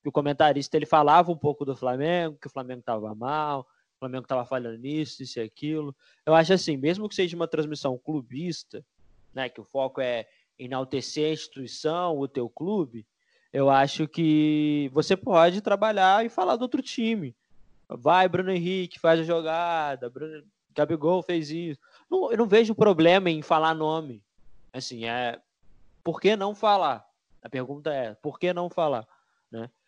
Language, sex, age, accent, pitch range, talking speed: Portuguese, male, 20-39, Brazilian, 135-195 Hz, 170 wpm